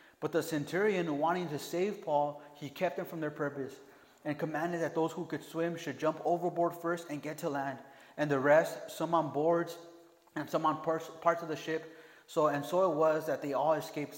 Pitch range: 145-170 Hz